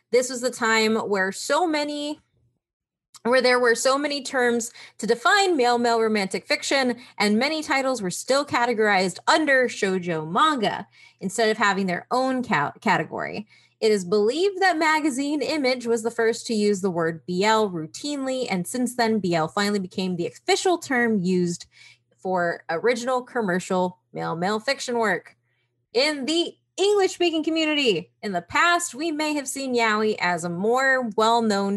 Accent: American